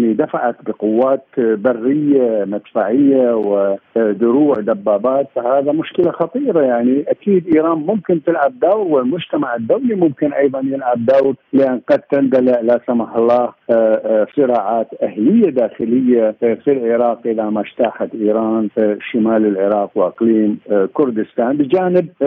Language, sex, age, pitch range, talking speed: Arabic, male, 50-69, 110-140 Hz, 110 wpm